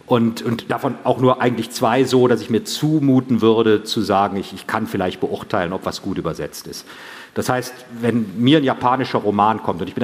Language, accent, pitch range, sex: German, German, 105-130 Hz, male